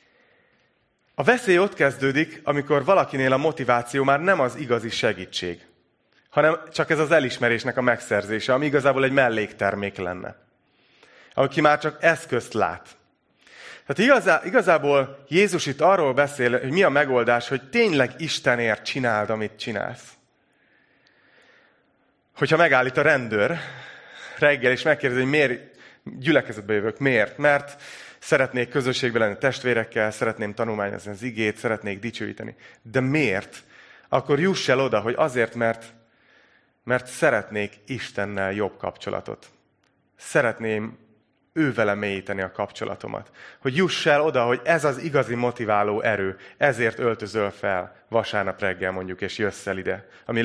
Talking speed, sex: 130 wpm, male